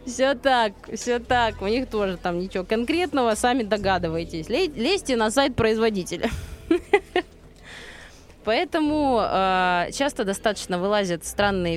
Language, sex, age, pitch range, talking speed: Russian, female, 20-39, 165-245 Hz, 110 wpm